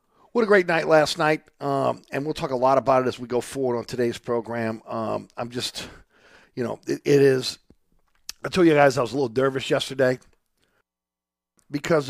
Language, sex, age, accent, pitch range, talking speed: English, male, 50-69, American, 105-130 Hz, 200 wpm